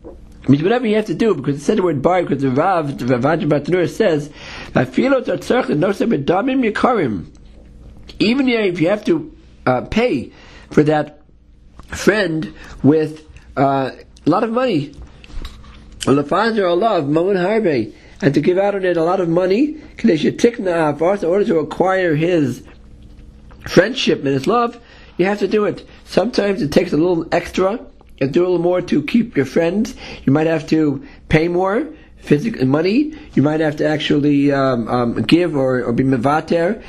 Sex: male